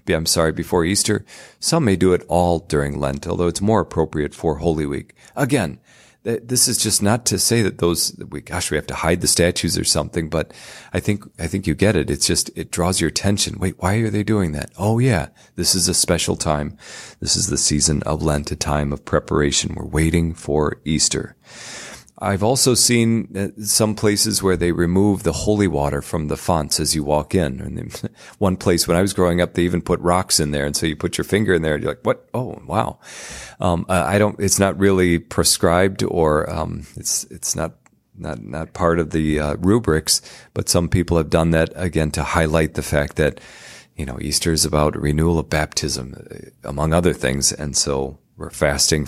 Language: English